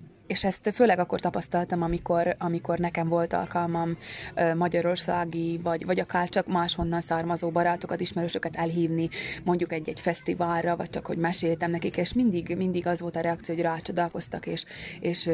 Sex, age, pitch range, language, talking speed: female, 20-39, 170-185 Hz, Hungarian, 155 wpm